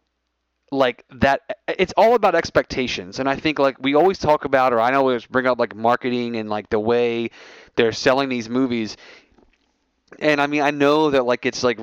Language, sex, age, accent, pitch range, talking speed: English, male, 30-49, American, 115-140 Hz, 195 wpm